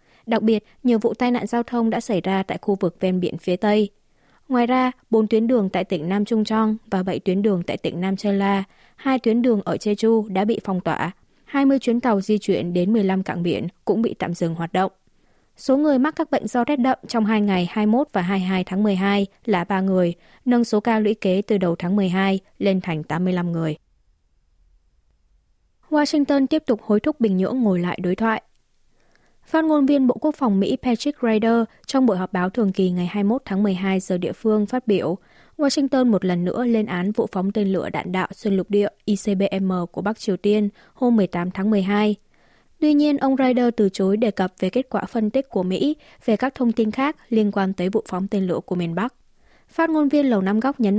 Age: 20-39